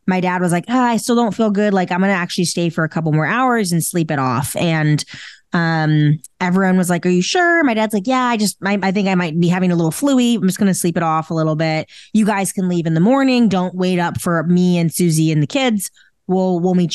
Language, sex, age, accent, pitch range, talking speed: English, female, 20-39, American, 165-210 Hz, 280 wpm